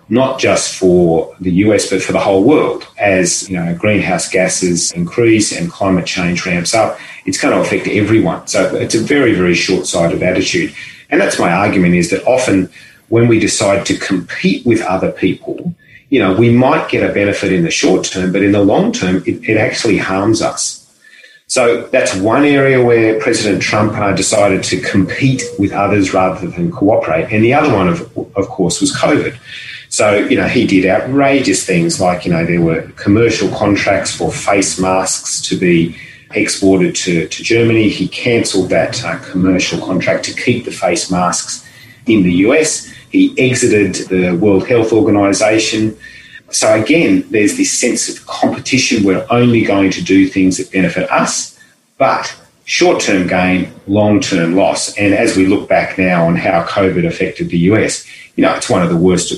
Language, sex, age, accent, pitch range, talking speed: English, male, 30-49, Australian, 95-120 Hz, 180 wpm